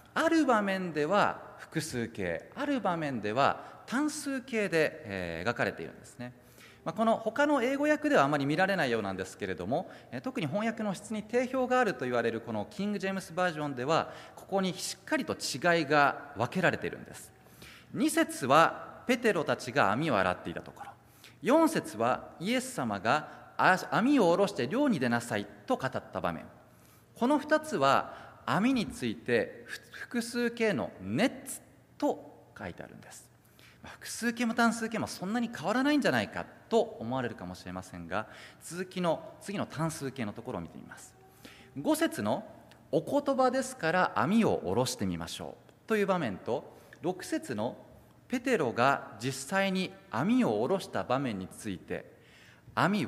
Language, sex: Japanese, male